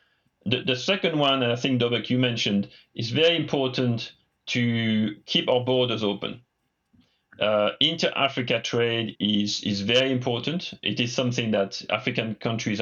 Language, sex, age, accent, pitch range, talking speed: English, male, 40-59, French, 105-130 Hz, 145 wpm